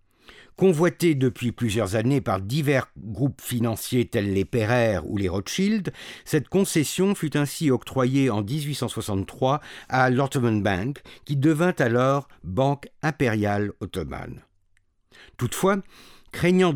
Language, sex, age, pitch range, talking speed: English, male, 50-69, 110-145 Hz, 115 wpm